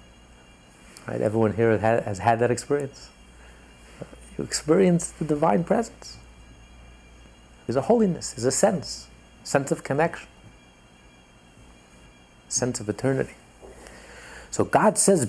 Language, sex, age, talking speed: English, male, 50-69, 120 wpm